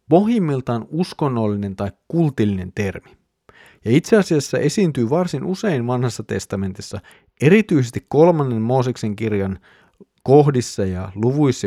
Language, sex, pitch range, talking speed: Finnish, male, 105-135 Hz, 105 wpm